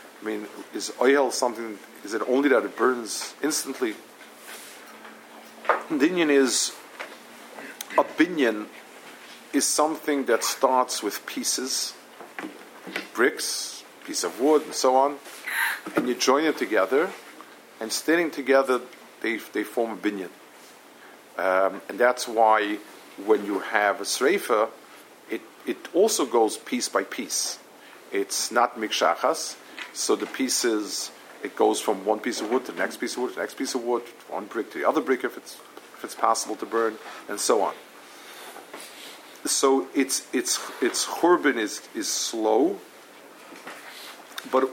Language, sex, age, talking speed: English, male, 50-69, 145 wpm